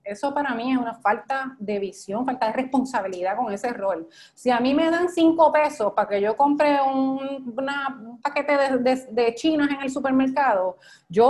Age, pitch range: 30-49, 210-280 Hz